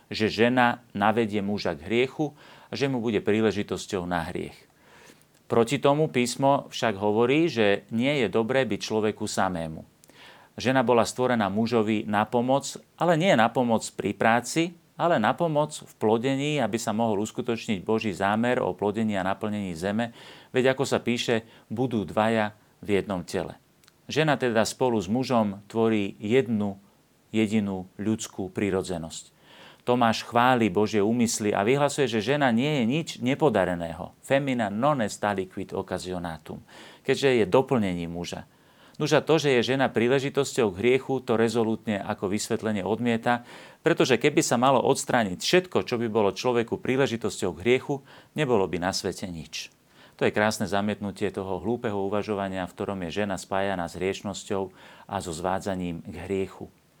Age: 40-59